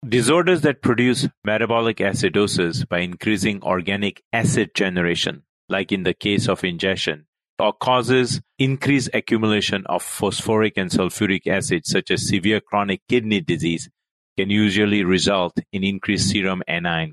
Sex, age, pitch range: male, 40-59, 100-125 Hz